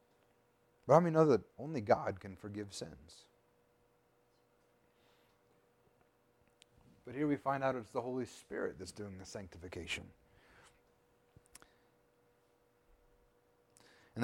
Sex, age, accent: male, 30-49, American